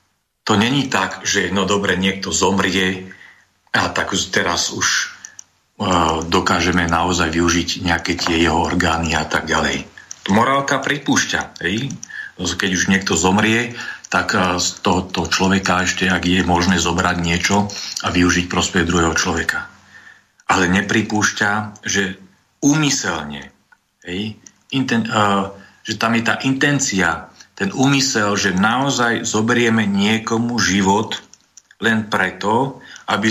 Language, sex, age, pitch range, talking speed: Slovak, male, 40-59, 90-115 Hz, 125 wpm